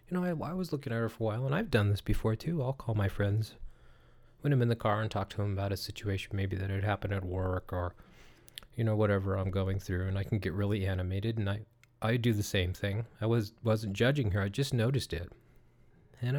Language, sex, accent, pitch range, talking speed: English, male, American, 100-125 Hz, 255 wpm